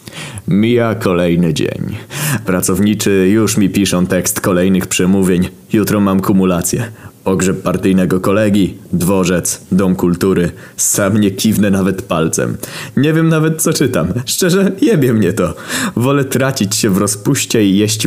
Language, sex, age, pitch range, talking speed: Polish, male, 20-39, 90-110 Hz, 135 wpm